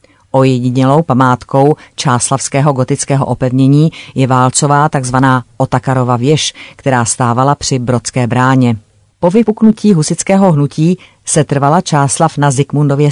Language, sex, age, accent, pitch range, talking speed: Czech, female, 40-59, native, 130-150 Hz, 110 wpm